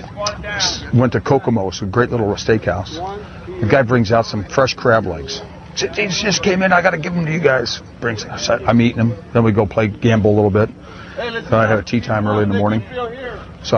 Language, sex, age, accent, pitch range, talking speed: English, male, 50-69, American, 100-120 Hz, 215 wpm